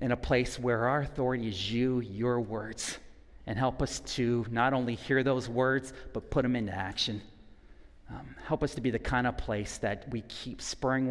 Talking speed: 200 wpm